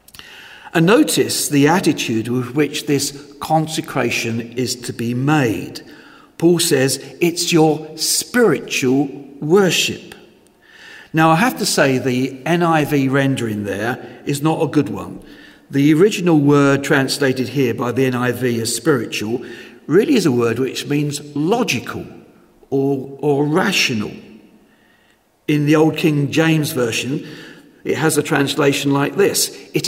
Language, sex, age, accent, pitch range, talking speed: English, male, 50-69, British, 135-165 Hz, 130 wpm